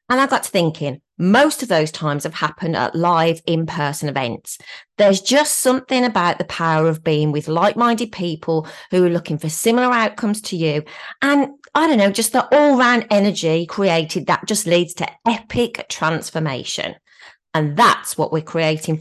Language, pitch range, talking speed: English, 160-225 Hz, 170 wpm